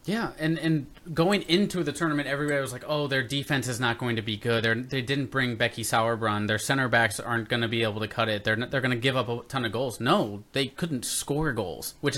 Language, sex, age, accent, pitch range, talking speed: English, male, 20-39, American, 115-150 Hz, 255 wpm